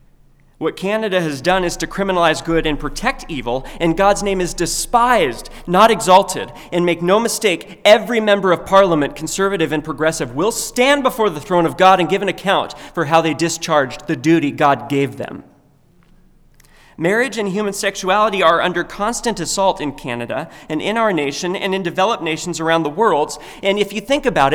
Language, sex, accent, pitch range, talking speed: English, male, American, 135-185 Hz, 185 wpm